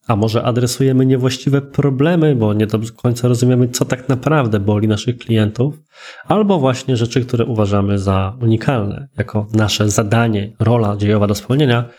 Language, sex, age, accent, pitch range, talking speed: Polish, male, 20-39, native, 110-140 Hz, 150 wpm